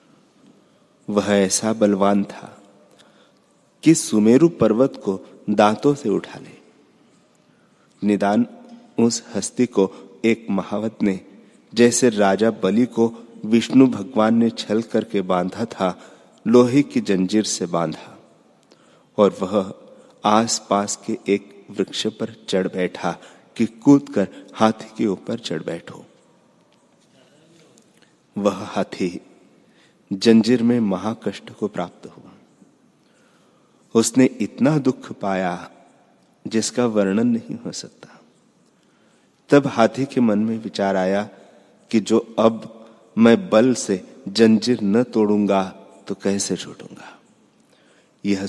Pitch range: 100-120 Hz